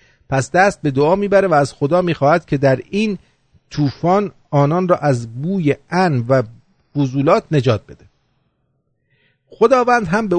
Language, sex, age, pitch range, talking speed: English, male, 40-59, 135-190 Hz, 145 wpm